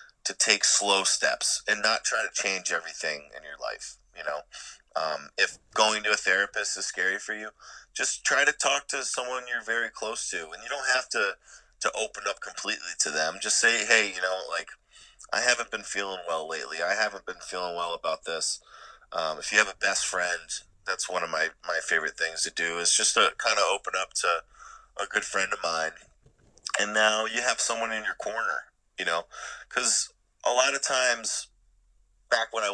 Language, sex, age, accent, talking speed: English, male, 30-49, American, 205 wpm